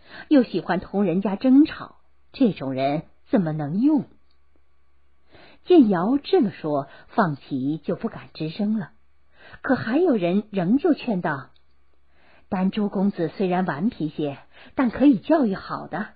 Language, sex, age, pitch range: Chinese, female, 50-69, 155-250 Hz